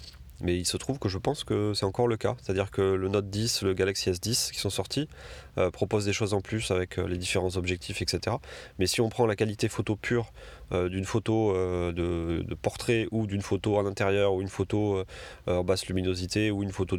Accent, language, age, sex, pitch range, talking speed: French, French, 30-49, male, 95-115 Hz, 225 wpm